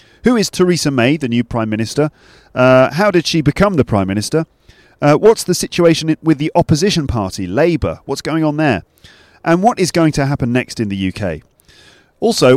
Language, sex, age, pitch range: English, male, 40-59, 110-160 Hz